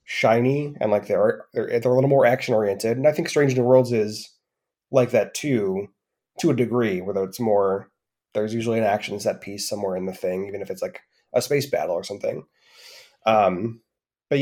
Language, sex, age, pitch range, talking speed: English, male, 30-49, 105-135 Hz, 200 wpm